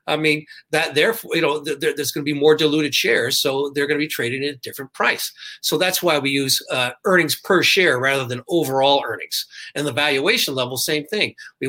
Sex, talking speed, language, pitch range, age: male, 220 wpm, English, 135-170 Hz, 50-69